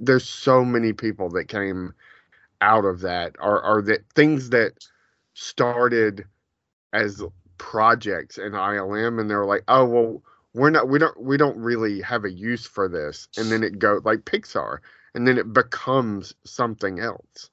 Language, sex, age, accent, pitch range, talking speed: English, male, 30-49, American, 90-115 Hz, 165 wpm